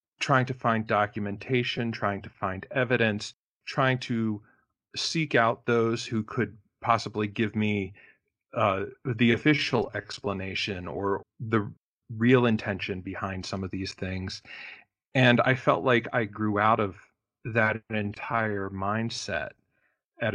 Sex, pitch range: male, 105-120 Hz